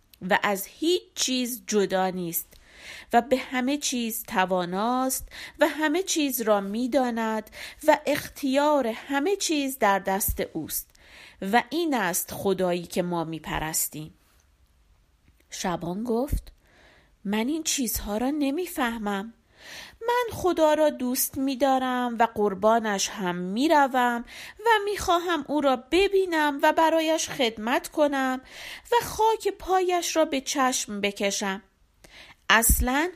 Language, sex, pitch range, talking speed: Persian, female, 205-315 Hz, 115 wpm